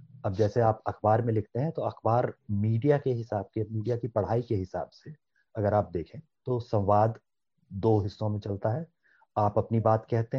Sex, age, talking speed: male, 30-49, 190 wpm